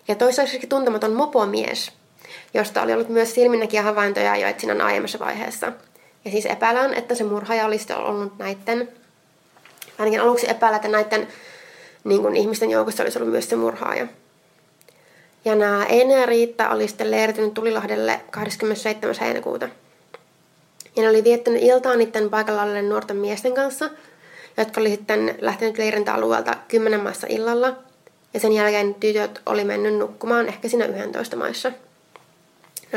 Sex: female